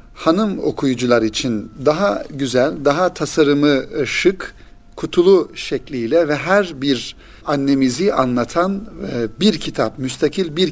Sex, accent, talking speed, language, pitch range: male, native, 105 wpm, Turkish, 120-160 Hz